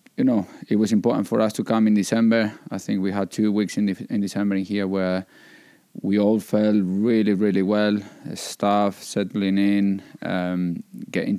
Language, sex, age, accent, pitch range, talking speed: Finnish, male, 20-39, Spanish, 95-105 Hz, 185 wpm